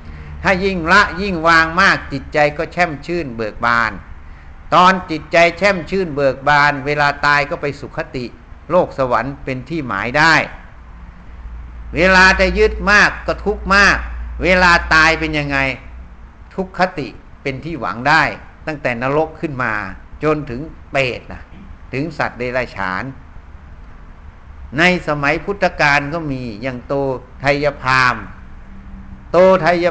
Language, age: Thai, 60-79